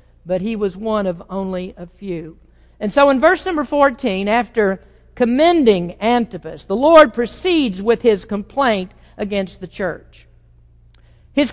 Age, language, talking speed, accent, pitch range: 50-69, English, 140 wpm, American, 185-270 Hz